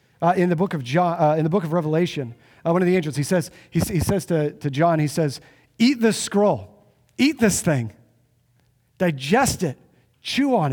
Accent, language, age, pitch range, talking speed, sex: American, English, 40-59, 130-175 Hz, 205 wpm, male